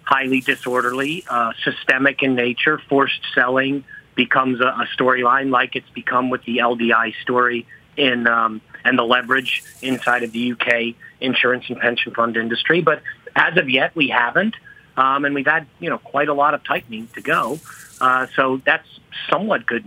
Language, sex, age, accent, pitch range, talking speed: English, male, 40-59, American, 125-155 Hz, 170 wpm